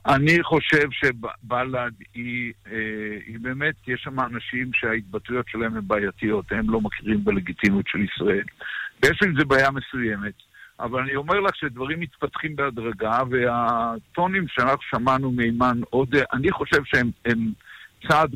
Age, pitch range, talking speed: 60-79, 120-150 Hz, 125 wpm